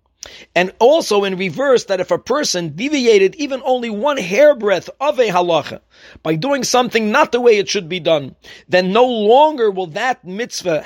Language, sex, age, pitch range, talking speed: English, male, 50-69, 180-250 Hz, 175 wpm